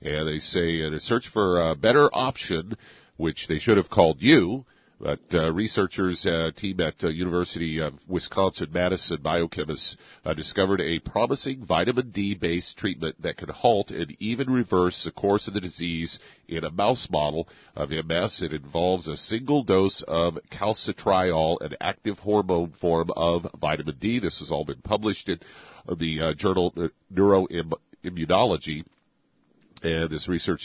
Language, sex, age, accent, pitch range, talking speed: English, male, 40-59, American, 80-95 Hz, 155 wpm